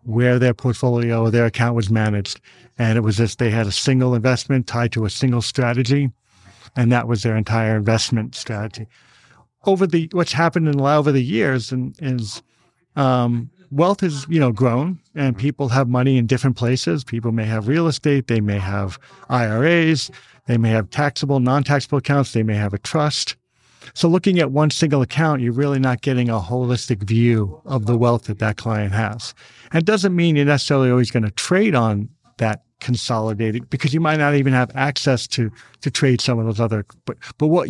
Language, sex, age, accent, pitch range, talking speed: English, male, 50-69, American, 115-140 Hz, 195 wpm